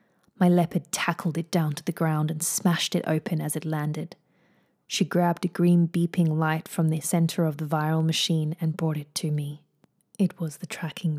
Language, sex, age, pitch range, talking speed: English, female, 20-39, 155-180 Hz, 200 wpm